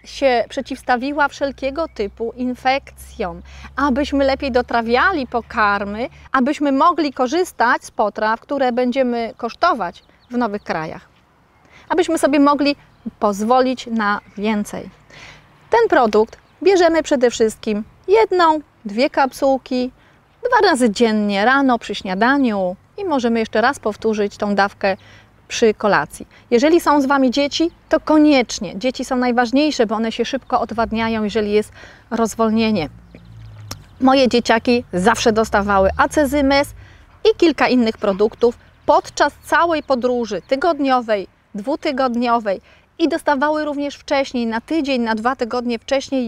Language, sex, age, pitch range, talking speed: Polish, female, 30-49, 225-285 Hz, 120 wpm